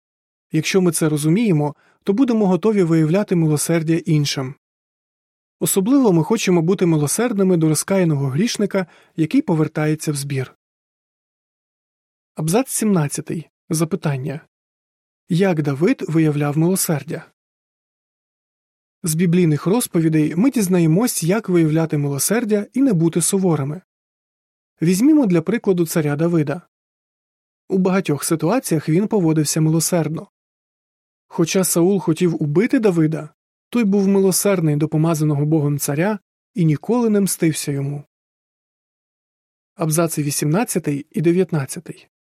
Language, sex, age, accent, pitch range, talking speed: Ukrainian, male, 30-49, native, 155-190 Hz, 105 wpm